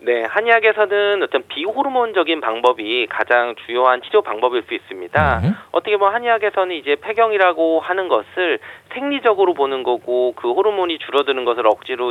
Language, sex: Korean, male